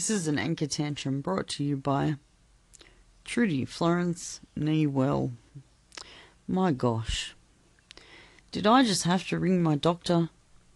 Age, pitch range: 30-49, 140-190 Hz